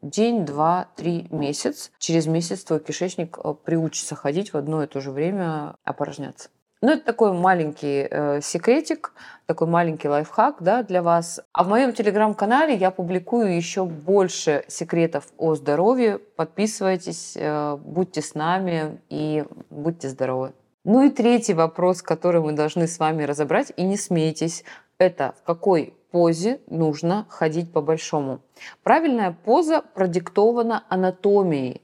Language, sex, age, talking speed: Russian, female, 20-39, 135 wpm